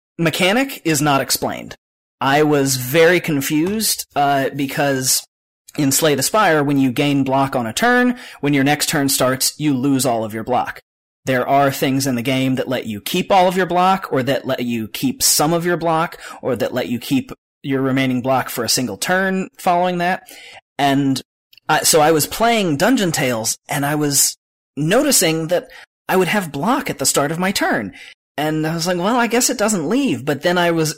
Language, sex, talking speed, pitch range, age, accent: English, male, 205 wpm, 130-175 Hz, 30-49, American